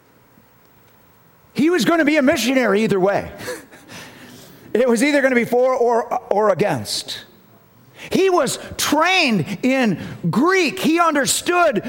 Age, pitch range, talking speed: 40-59, 190-285 Hz, 130 wpm